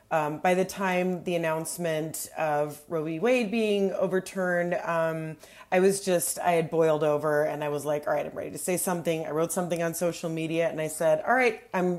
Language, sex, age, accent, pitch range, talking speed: English, female, 30-49, American, 160-195 Hz, 215 wpm